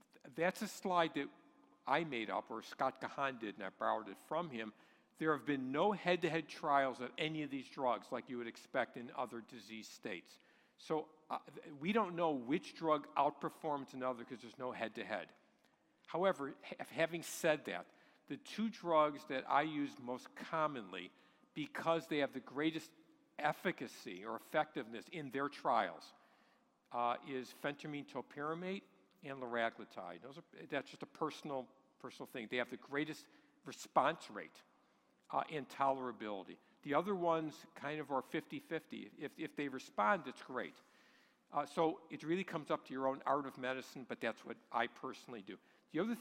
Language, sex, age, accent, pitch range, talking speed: English, male, 50-69, American, 125-160 Hz, 165 wpm